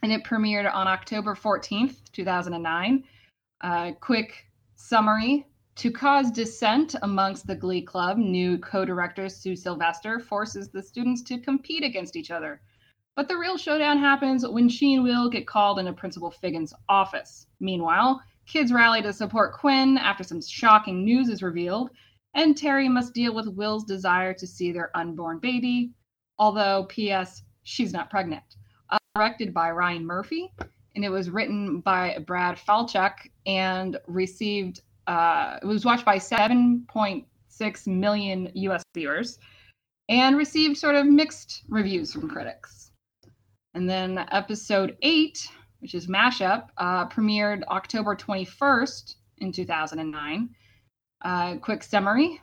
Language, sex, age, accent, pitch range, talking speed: English, female, 20-39, American, 180-240 Hz, 135 wpm